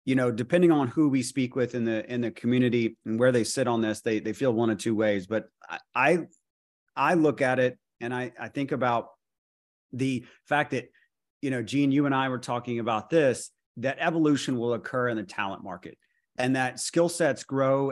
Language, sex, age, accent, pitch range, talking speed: English, male, 30-49, American, 115-135 Hz, 210 wpm